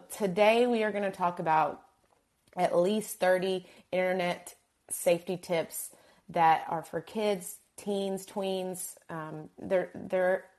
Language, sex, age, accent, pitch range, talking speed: English, female, 30-49, American, 165-195 Hz, 125 wpm